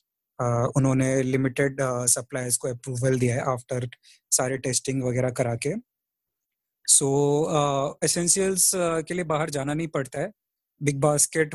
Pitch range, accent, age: 130-145 Hz, native, 20-39